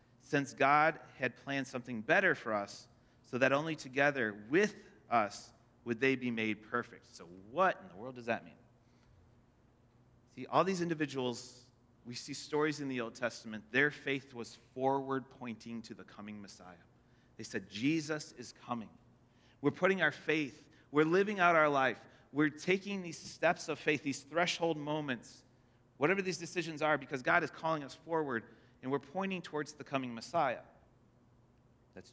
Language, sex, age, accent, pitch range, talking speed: English, male, 30-49, American, 120-155 Hz, 165 wpm